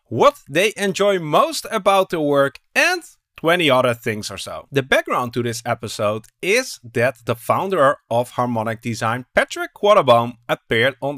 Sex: male